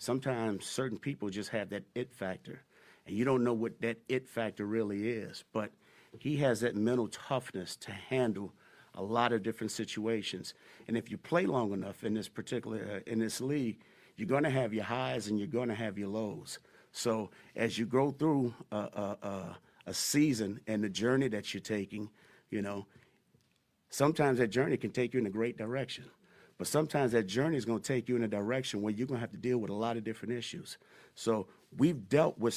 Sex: male